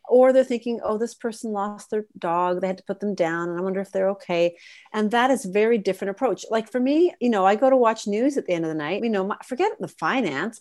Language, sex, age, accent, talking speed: English, female, 40-59, American, 275 wpm